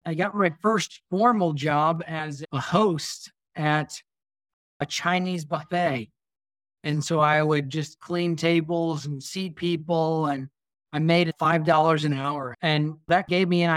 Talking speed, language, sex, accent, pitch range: 150 wpm, English, male, American, 150-175 Hz